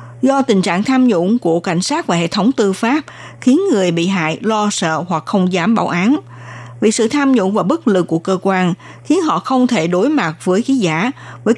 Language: Vietnamese